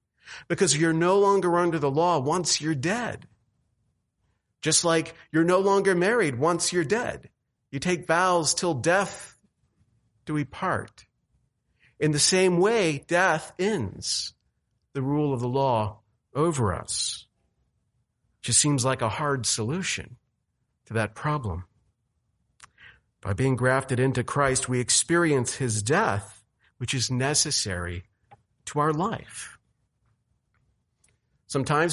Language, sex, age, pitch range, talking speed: English, male, 50-69, 115-165 Hz, 120 wpm